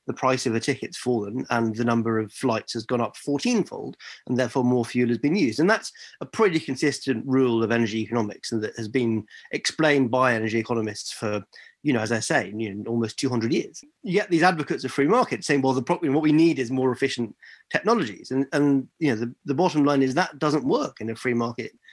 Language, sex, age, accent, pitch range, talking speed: English, male, 30-49, British, 115-145 Hz, 225 wpm